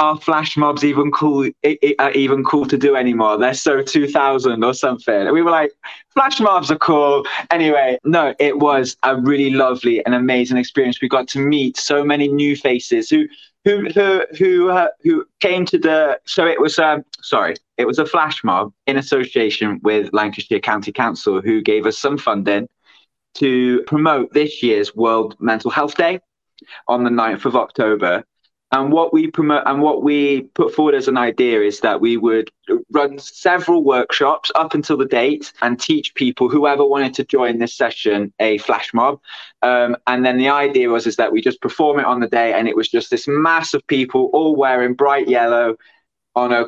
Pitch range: 125-160 Hz